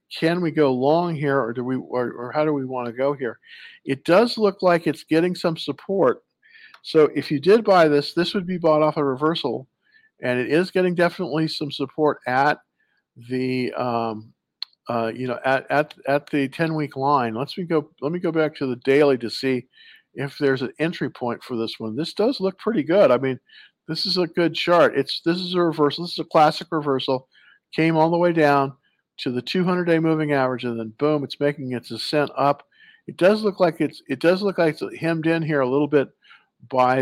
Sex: male